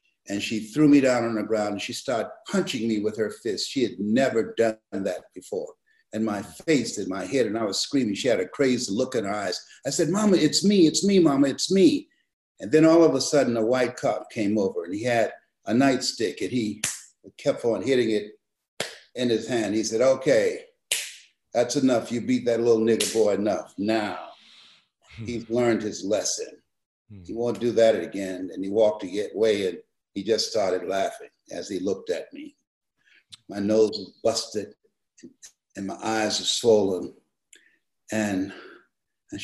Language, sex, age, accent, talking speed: English, male, 60-79, American, 185 wpm